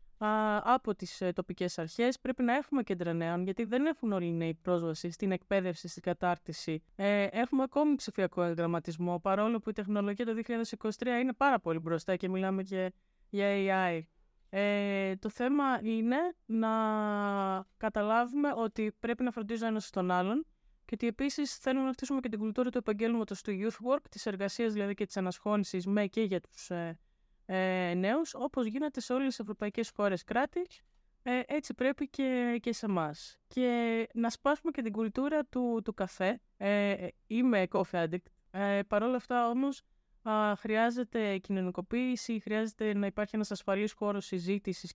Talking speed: 155 wpm